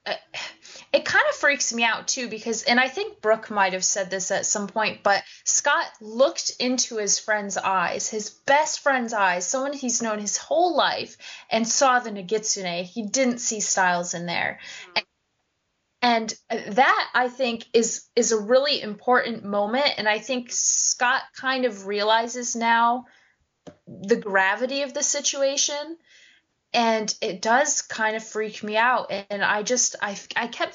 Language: English